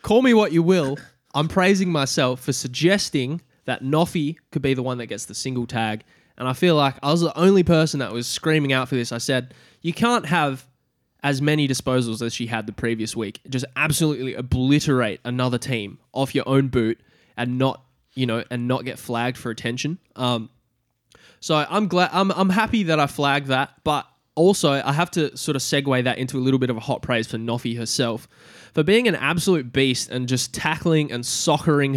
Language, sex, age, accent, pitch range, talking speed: English, male, 20-39, Australian, 120-150 Hz, 205 wpm